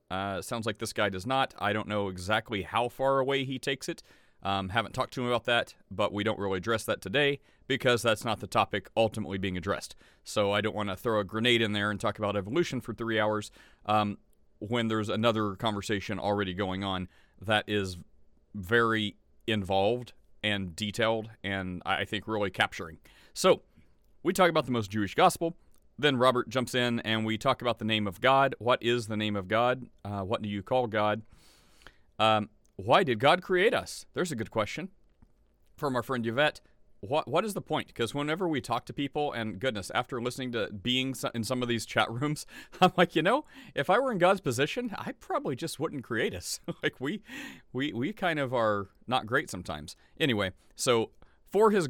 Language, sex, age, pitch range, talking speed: English, male, 40-59, 100-130 Hz, 200 wpm